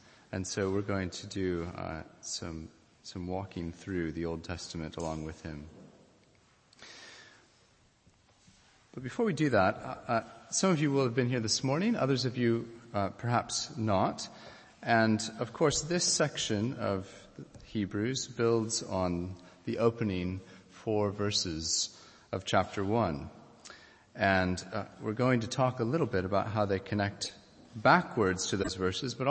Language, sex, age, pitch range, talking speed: English, male, 30-49, 95-120 Hz, 145 wpm